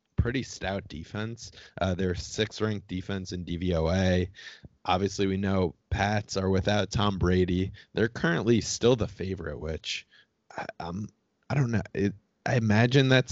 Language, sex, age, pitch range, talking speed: English, male, 20-39, 90-110 Hz, 145 wpm